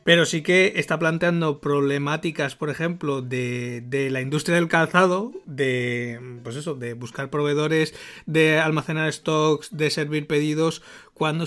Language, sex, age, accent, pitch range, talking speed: Spanish, male, 30-49, Spanish, 130-165 Hz, 130 wpm